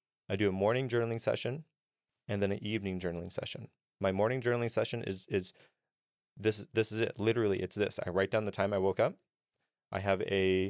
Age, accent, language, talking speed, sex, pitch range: 30-49, American, English, 200 wpm, male, 95-115 Hz